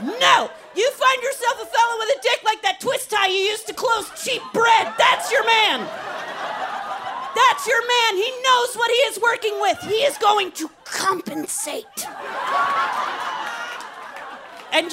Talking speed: 155 wpm